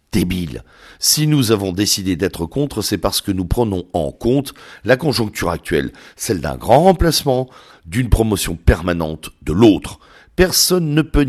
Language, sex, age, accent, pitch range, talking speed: French, male, 60-79, French, 95-120 Hz, 155 wpm